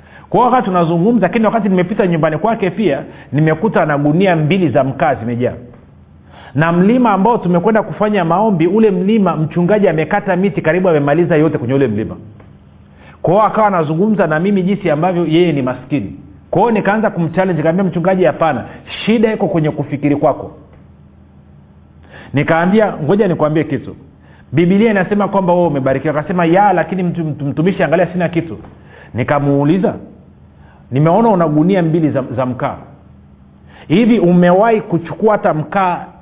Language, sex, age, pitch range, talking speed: Swahili, male, 40-59, 125-180 Hz, 145 wpm